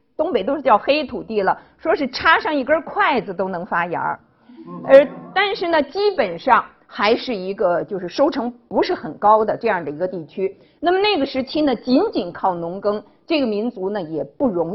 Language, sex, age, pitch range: Chinese, female, 50-69, 210-310 Hz